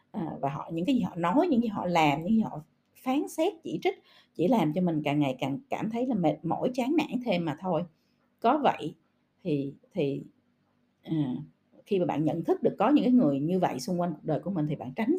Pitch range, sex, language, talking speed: 160-245 Hz, female, Vietnamese, 250 wpm